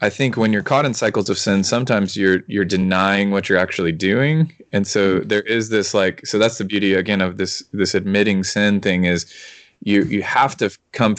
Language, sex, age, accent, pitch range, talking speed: English, male, 20-39, American, 90-110 Hz, 215 wpm